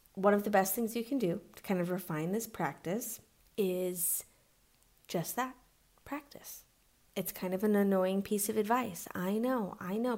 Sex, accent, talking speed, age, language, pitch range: female, American, 175 wpm, 20-39, English, 180-235 Hz